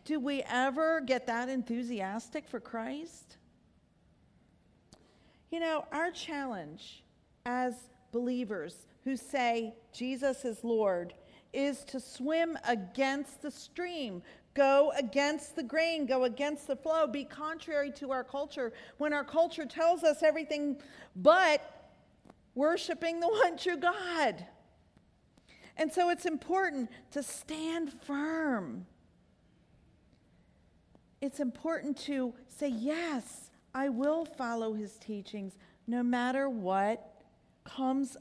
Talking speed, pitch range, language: 110 wpm, 230-295 Hz, English